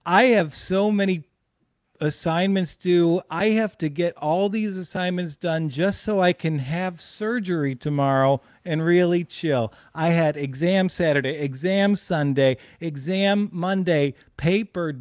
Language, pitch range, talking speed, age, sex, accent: English, 140-190 Hz, 130 wpm, 40-59, male, American